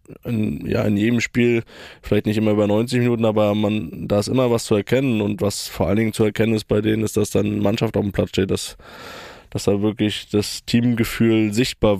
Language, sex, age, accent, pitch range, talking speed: German, male, 20-39, German, 105-135 Hz, 220 wpm